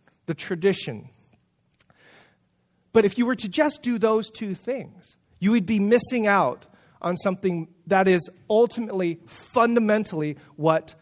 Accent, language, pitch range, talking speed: American, English, 165-225 Hz, 130 wpm